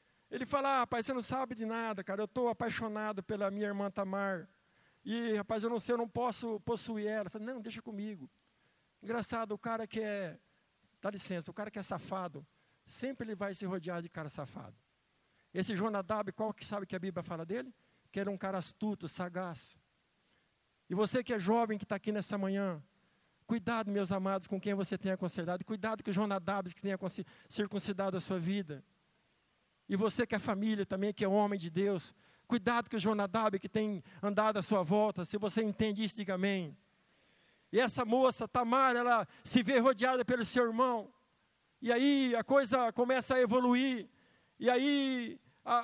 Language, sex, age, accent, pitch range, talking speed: Portuguese, male, 60-79, Brazilian, 195-240 Hz, 190 wpm